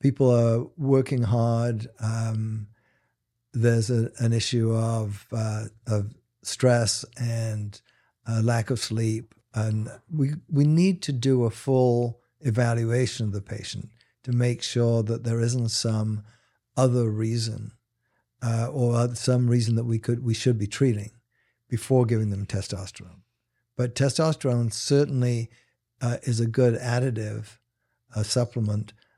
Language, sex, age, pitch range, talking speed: English, male, 60-79, 110-125 Hz, 130 wpm